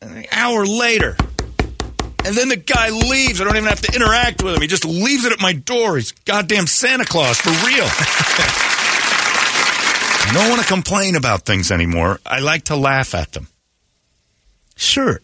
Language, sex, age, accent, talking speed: English, male, 40-59, American, 175 wpm